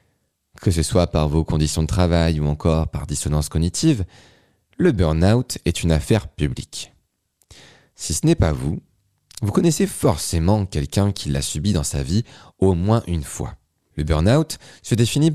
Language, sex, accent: French, male, French